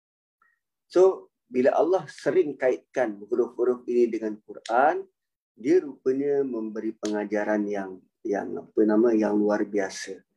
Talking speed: 115 wpm